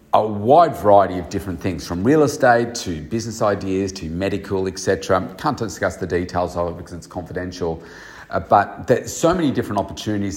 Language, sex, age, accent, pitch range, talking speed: English, male, 40-59, Australian, 90-110 Hz, 180 wpm